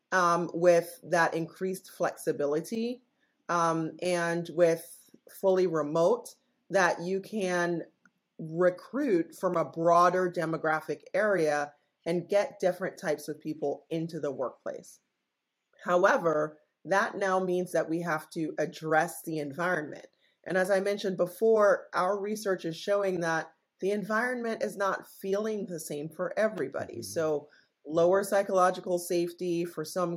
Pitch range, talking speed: 160-185 Hz, 125 wpm